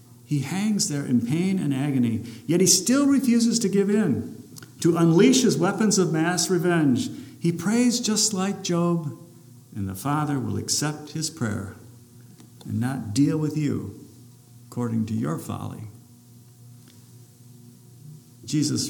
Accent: American